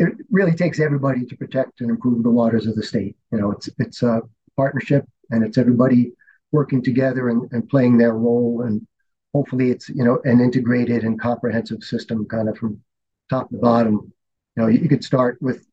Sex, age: male, 40-59